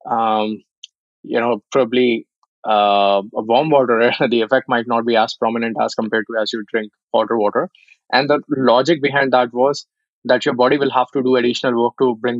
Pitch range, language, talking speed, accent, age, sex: 115-140 Hz, English, 195 wpm, Indian, 20-39, male